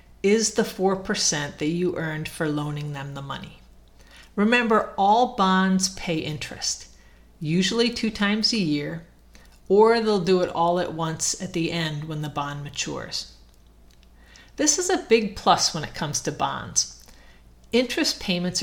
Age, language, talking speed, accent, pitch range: 50-69, English, 150 wpm, American, 145-200 Hz